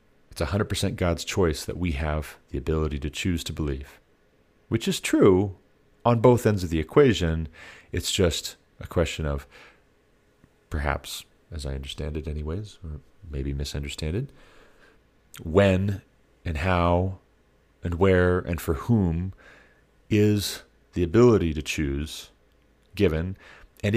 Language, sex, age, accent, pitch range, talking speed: English, male, 40-59, American, 75-100 Hz, 130 wpm